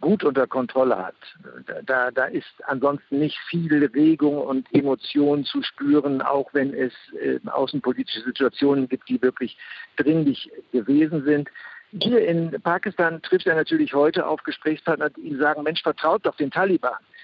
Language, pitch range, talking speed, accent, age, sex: German, 140-170 Hz, 145 wpm, German, 60-79, male